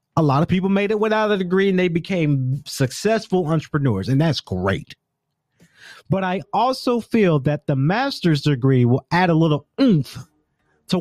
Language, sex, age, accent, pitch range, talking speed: English, male, 30-49, American, 135-180 Hz, 170 wpm